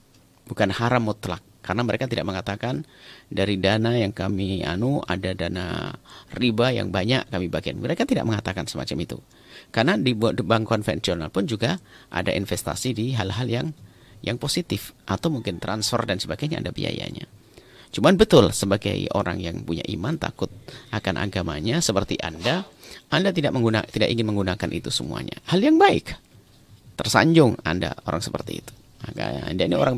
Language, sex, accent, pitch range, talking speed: Indonesian, male, native, 95-120 Hz, 150 wpm